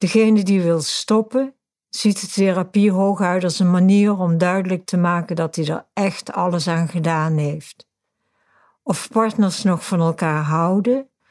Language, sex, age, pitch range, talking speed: Dutch, female, 60-79, 170-210 Hz, 155 wpm